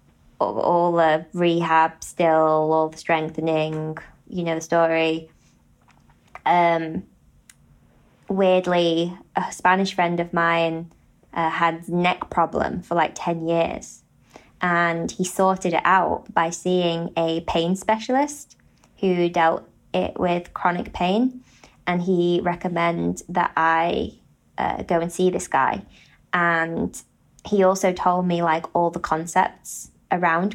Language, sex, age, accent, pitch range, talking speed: English, female, 20-39, British, 170-210 Hz, 125 wpm